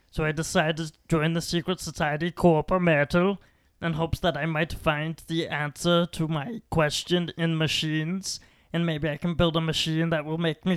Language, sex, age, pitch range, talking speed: English, male, 30-49, 150-175 Hz, 190 wpm